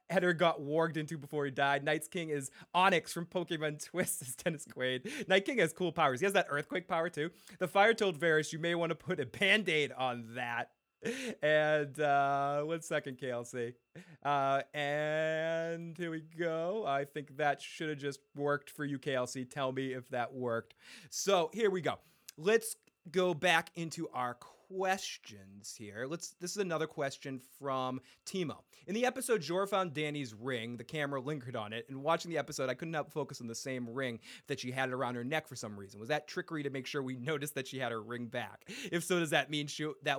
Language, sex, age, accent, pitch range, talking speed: English, male, 30-49, American, 130-170 Hz, 210 wpm